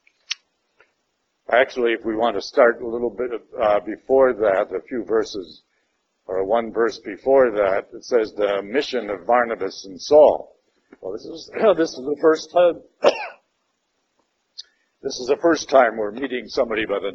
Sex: male